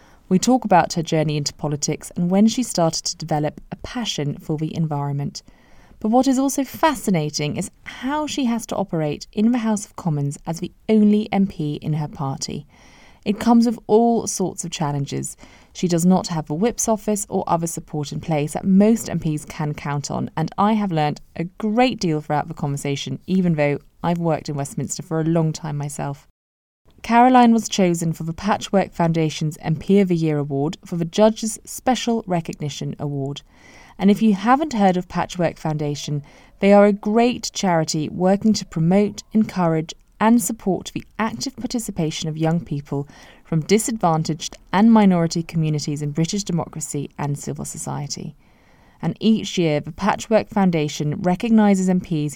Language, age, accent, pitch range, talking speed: English, 20-39, British, 150-210 Hz, 170 wpm